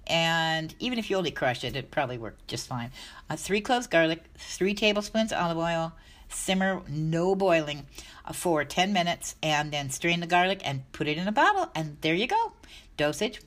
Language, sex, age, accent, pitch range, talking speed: English, female, 60-79, American, 145-185 Hz, 190 wpm